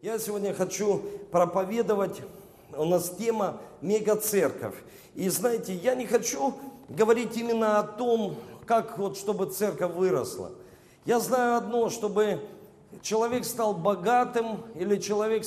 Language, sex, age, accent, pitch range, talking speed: Russian, male, 40-59, native, 195-230 Hz, 125 wpm